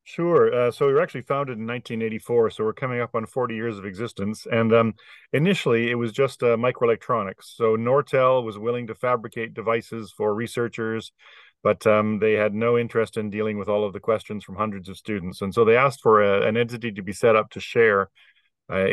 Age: 40-59